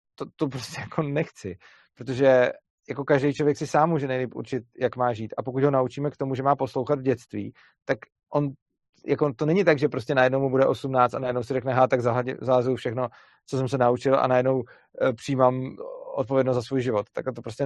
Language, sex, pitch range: Czech, male, 130-145 Hz